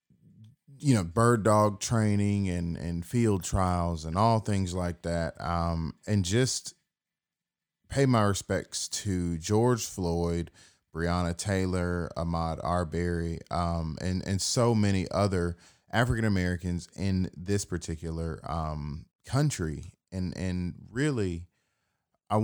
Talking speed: 120 wpm